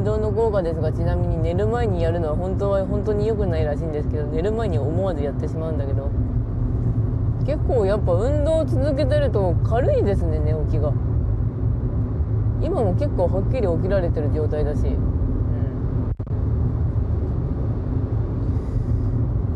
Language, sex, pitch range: Japanese, female, 105-120 Hz